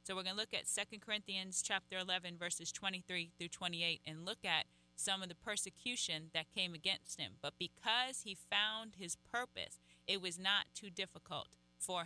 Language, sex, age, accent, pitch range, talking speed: English, female, 30-49, American, 155-195 Hz, 185 wpm